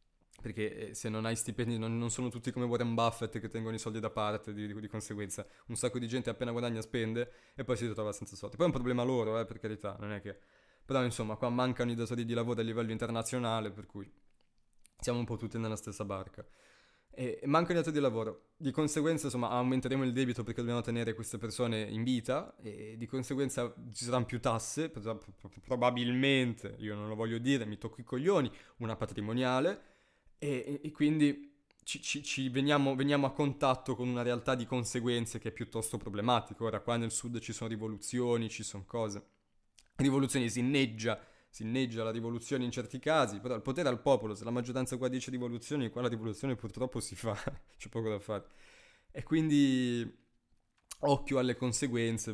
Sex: male